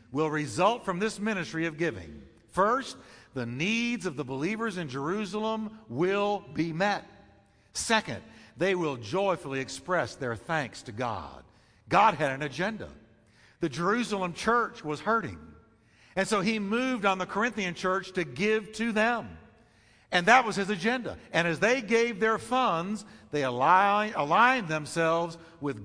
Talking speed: 145 wpm